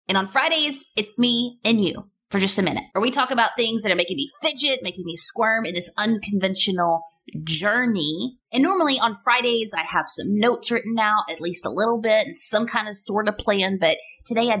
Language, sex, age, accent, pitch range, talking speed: English, female, 20-39, American, 170-220 Hz, 220 wpm